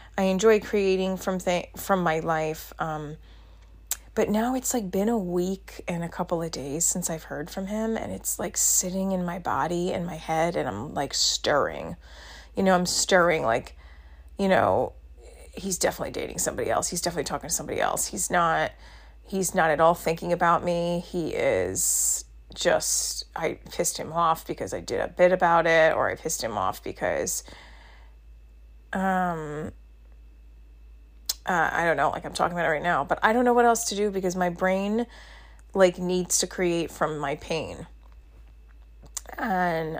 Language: English